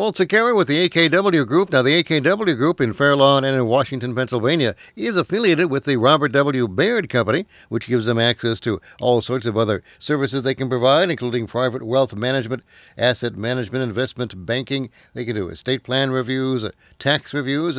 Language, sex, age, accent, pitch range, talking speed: English, male, 60-79, American, 110-130 Hz, 175 wpm